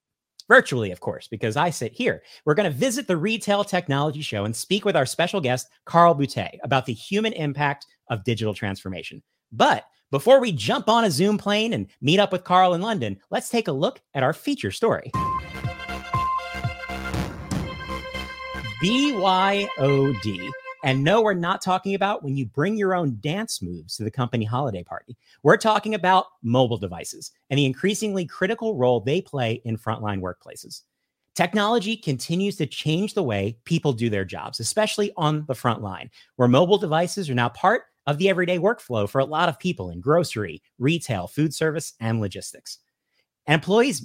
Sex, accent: male, American